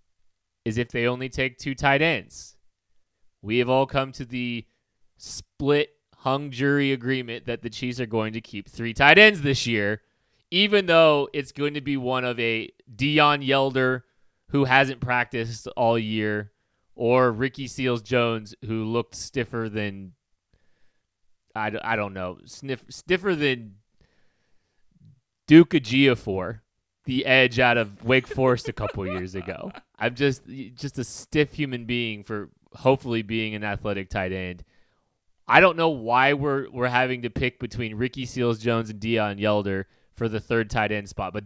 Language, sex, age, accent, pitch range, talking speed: English, male, 30-49, American, 110-135 Hz, 155 wpm